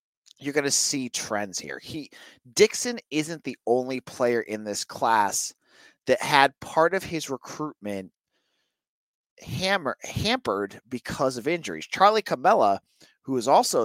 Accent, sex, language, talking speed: American, male, English, 135 wpm